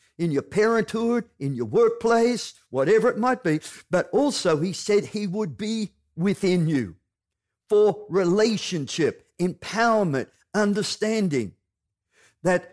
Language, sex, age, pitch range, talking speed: English, male, 50-69, 150-210 Hz, 115 wpm